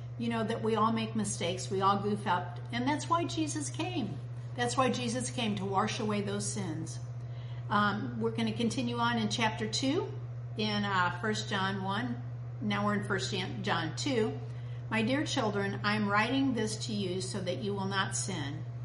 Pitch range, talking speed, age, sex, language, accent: 110-125 Hz, 190 wpm, 50-69, female, English, American